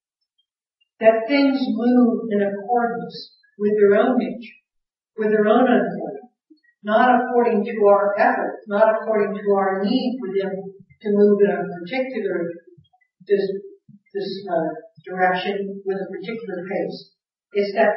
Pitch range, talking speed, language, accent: 195-235 Hz, 135 wpm, English, American